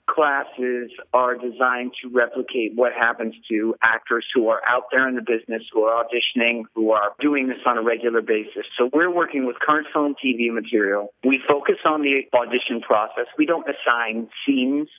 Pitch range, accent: 120-145 Hz, American